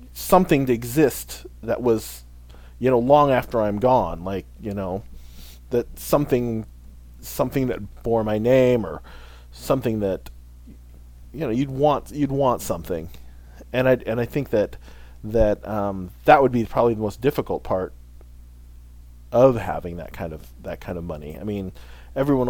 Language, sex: English, male